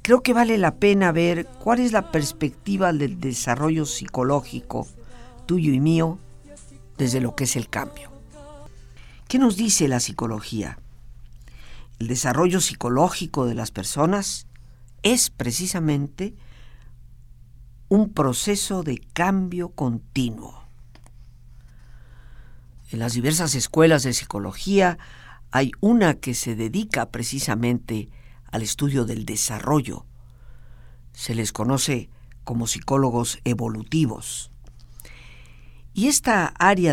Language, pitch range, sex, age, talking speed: Spanish, 120-160 Hz, female, 50-69, 105 wpm